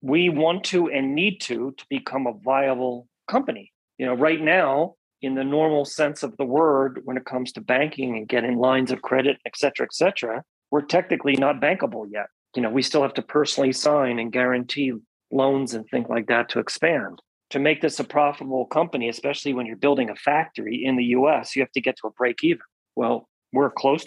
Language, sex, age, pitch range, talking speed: English, male, 40-59, 125-150 Hz, 205 wpm